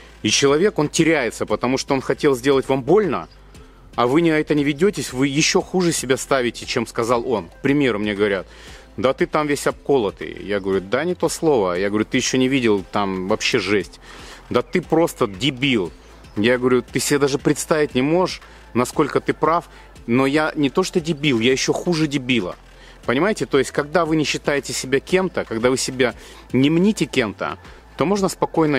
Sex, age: male, 30-49